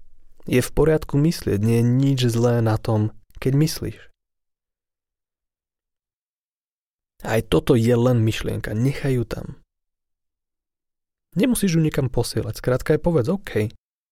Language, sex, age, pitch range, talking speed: Slovak, male, 30-49, 90-125 Hz, 120 wpm